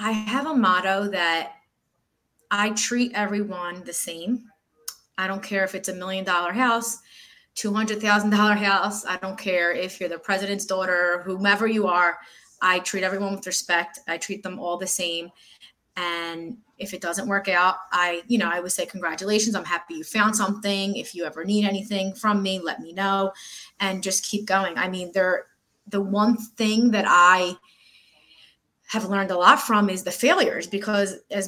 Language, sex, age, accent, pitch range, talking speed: English, female, 20-39, American, 175-210 Hz, 175 wpm